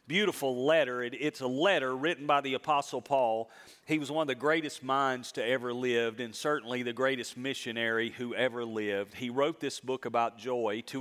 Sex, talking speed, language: male, 190 wpm, English